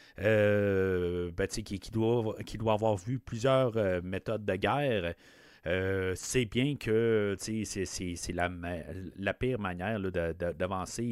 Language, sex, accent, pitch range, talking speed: French, male, Canadian, 95-130 Hz, 140 wpm